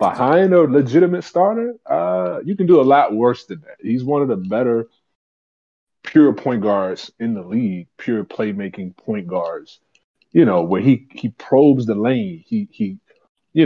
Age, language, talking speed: 20-39, English, 170 wpm